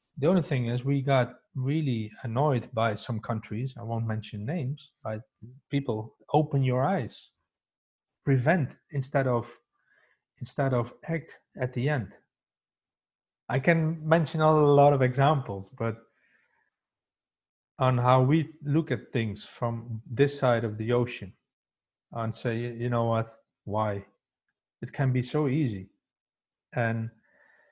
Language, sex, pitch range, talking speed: English, male, 115-140 Hz, 130 wpm